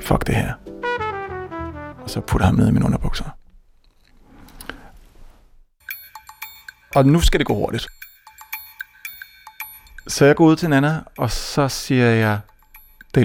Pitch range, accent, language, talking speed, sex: 115-145 Hz, native, Danish, 130 wpm, male